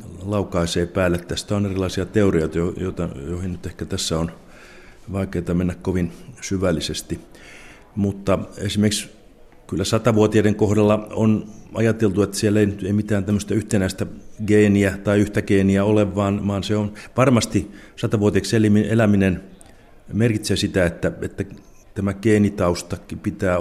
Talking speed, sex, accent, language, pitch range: 115 wpm, male, native, Finnish, 90-105 Hz